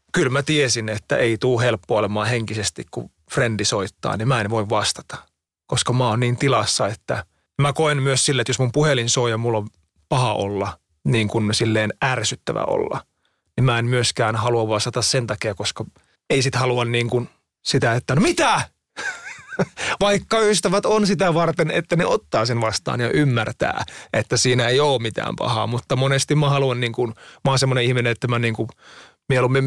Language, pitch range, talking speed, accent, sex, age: Finnish, 110-135 Hz, 180 wpm, native, male, 30-49